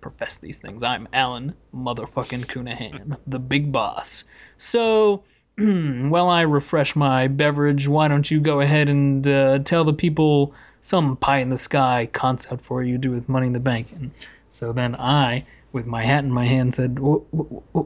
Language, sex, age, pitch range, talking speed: English, male, 20-39, 130-155 Hz, 190 wpm